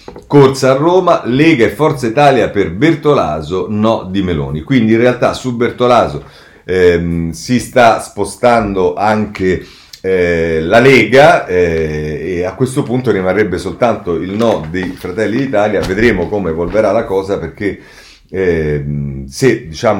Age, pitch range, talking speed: 40-59, 80-115 Hz, 130 wpm